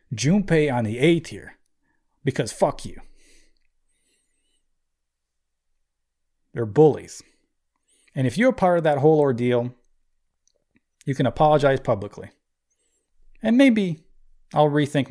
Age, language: 30-49, English